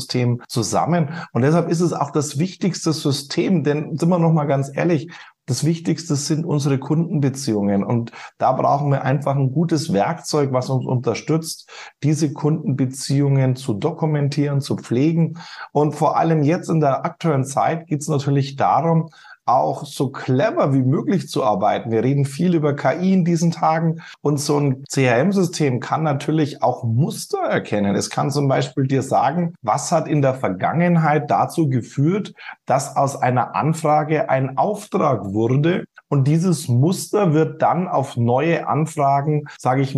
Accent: German